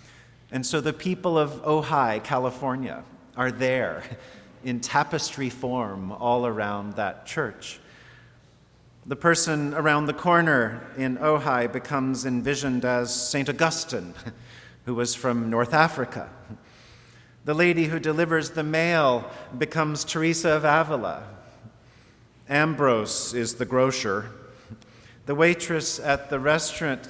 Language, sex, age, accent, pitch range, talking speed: English, male, 40-59, American, 120-150 Hz, 115 wpm